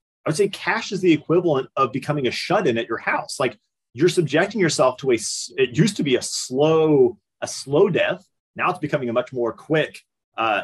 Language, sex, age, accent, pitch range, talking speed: English, male, 30-49, American, 130-175 Hz, 210 wpm